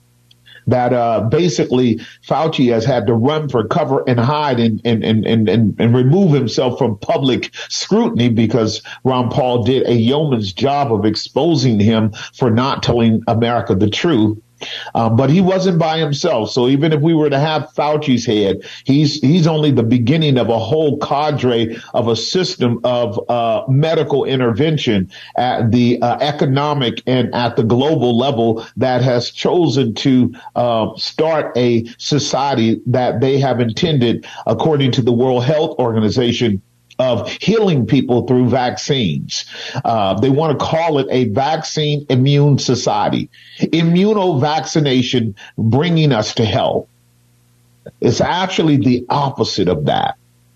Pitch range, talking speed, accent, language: 115-145 Hz, 145 wpm, American, English